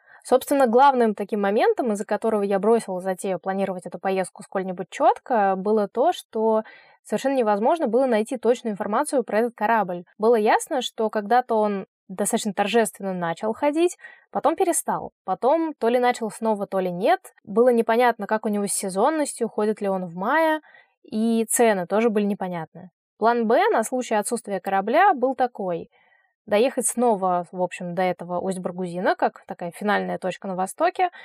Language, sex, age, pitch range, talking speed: Russian, female, 20-39, 195-255 Hz, 160 wpm